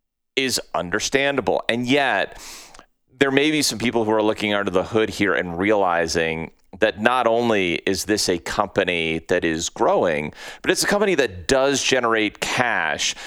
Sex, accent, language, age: male, American, English, 30-49